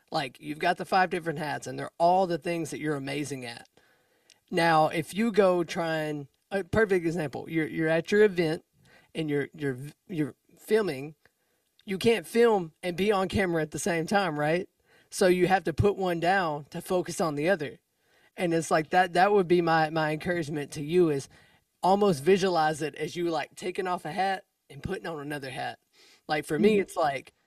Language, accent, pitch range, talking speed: English, American, 150-185 Hz, 200 wpm